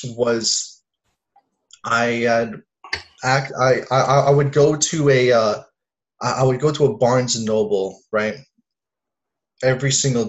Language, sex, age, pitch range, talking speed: English, male, 20-39, 110-135 Hz, 135 wpm